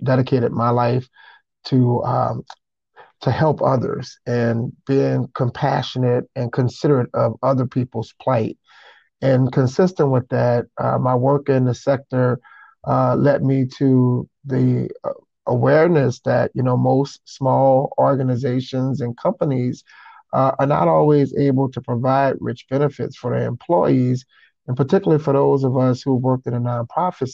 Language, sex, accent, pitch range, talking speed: English, male, American, 125-135 Hz, 140 wpm